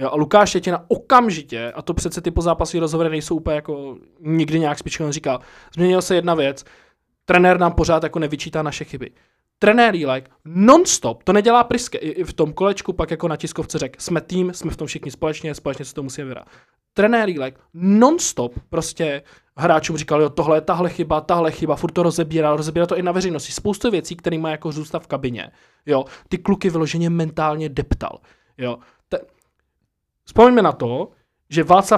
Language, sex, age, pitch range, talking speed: Czech, male, 20-39, 145-175 Hz, 185 wpm